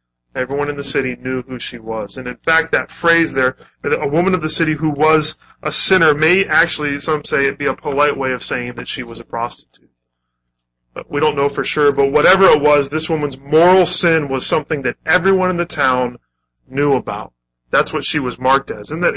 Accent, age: American, 20-39